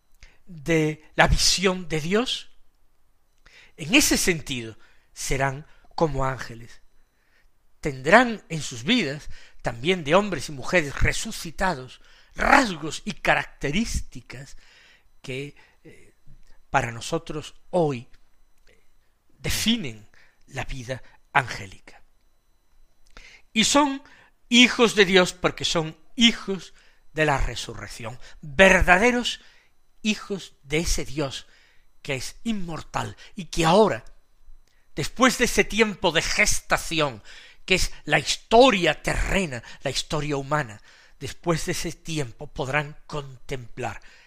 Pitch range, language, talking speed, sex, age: 130-195 Hz, Spanish, 105 wpm, male, 60-79